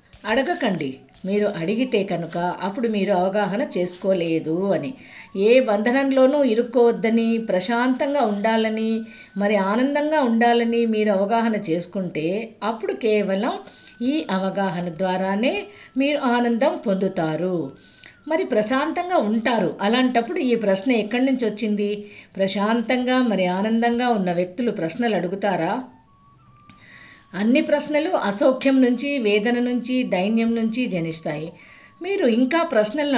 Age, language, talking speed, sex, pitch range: 50-69, Telugu, 100 wpm, female, 195-255 Hz